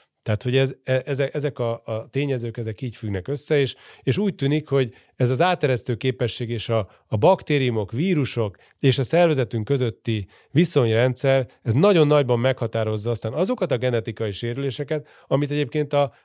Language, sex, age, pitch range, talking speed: Hungarian, male, 30-49, 115-140 Hz, 160 wpm